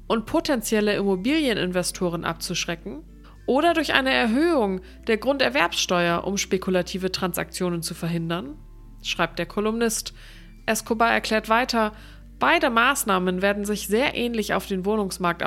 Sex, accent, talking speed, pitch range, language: female, German, 115 wpm, 180-230 Hz, German